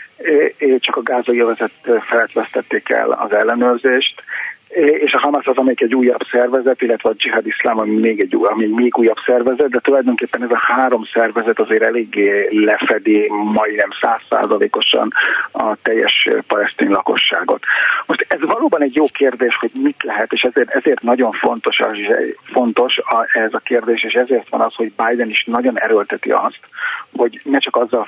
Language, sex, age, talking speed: Hungarian, male, 40-59, 150 wpm